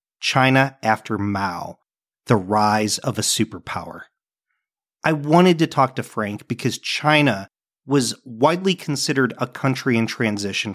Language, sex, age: English, male, 40-59